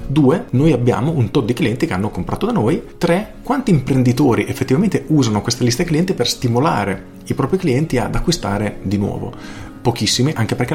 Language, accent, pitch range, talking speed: Italian, native, 100-130 Hz, 180 wpm